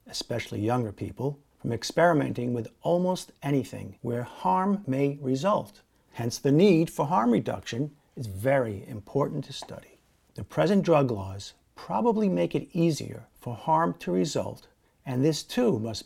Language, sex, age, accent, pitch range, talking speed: English, male, 50-69, American, 120-165 Hz, 145 wpm